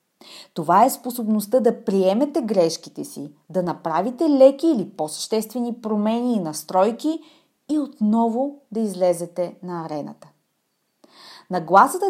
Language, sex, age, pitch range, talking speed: Bulgarian, female, 20-39, 180-235 Hz, 110 wpm